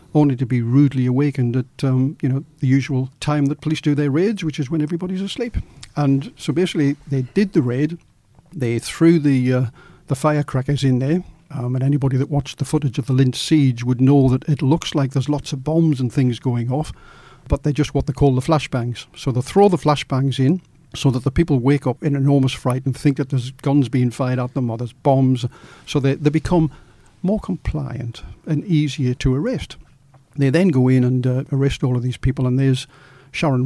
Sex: male